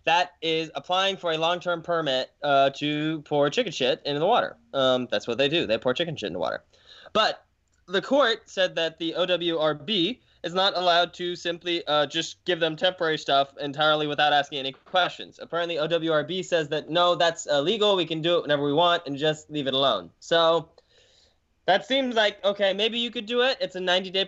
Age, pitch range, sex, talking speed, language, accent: 10-29, 145-185 Hz, male, 205 wpm, English, American